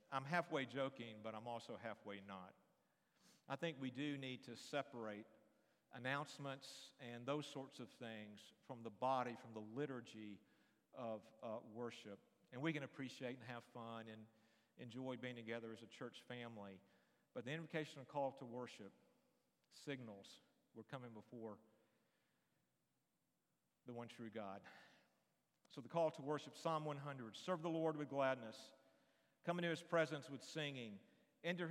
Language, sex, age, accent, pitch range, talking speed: English, male, 50-69, American, 115-145 Hz, 150 wpm